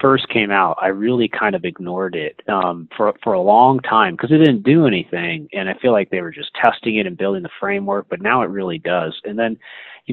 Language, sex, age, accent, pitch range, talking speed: English, male, 30-49, American, 100-125 Hz, 245 wpm